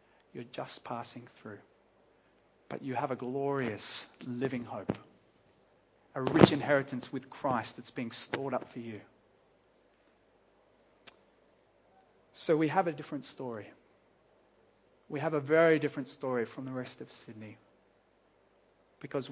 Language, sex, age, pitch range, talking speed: English, male, 30-49, 125-165 Hz, 125 wpm